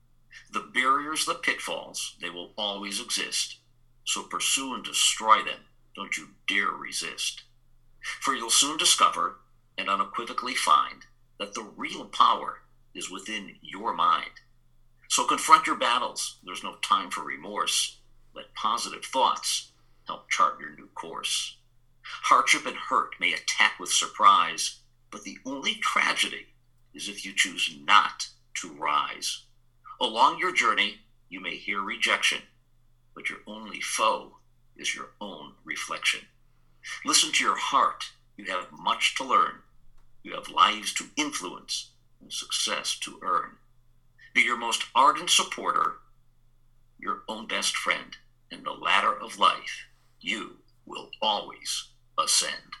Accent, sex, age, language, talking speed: American, male, 50-69, English, 135 wpm